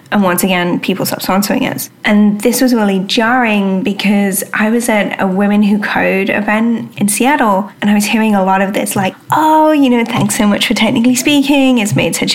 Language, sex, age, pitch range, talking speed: English, female, 10-29, 190-240 Hz, 215 wpm